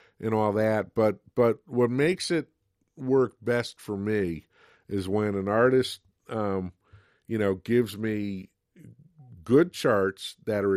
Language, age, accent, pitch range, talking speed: English, 50-69, American, 95-120 Hz, 140 wpm